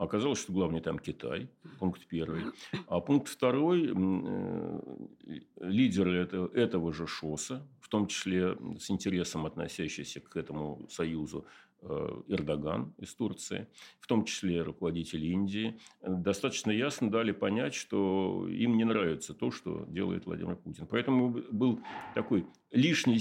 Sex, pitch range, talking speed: male, 90-125 Hz, 130 wpm